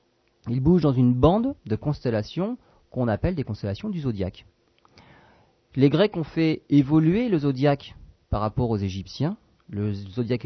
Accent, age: French, 40-59